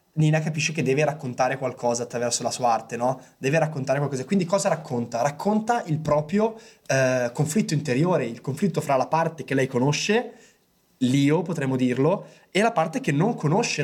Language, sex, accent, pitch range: Italian, male, native, 135-175 Hz